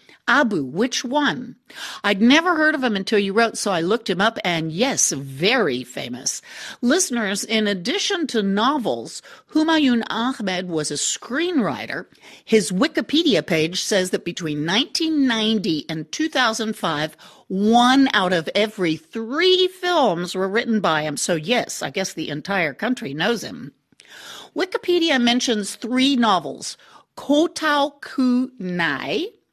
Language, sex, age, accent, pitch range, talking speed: English, female, 50-69, American, 175-265 Hz, 130 wpm